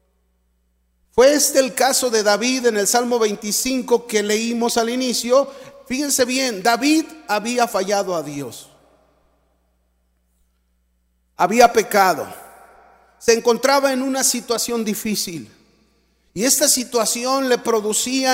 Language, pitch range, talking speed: Spanish, 190-250 Hz, 110 wpm